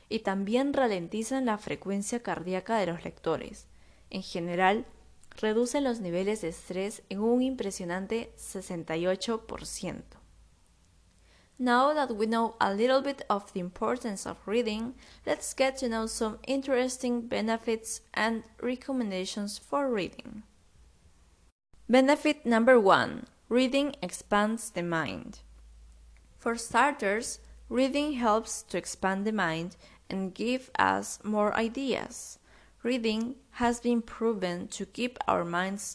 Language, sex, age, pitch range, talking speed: English, female, 20-39, 180-240 Hz, 120 wpm